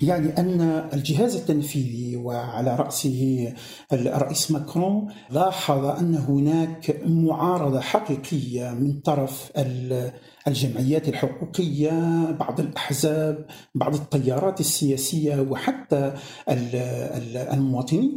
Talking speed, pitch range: 85 wpm, 135-165 Hz